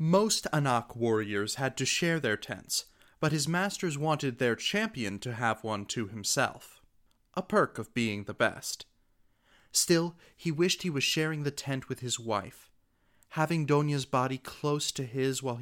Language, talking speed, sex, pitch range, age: English, 165 wpm, male, 115-150 Hz, 30-49